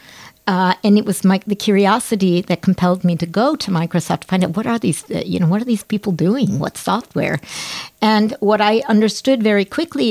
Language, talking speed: Swedish, 210 wpm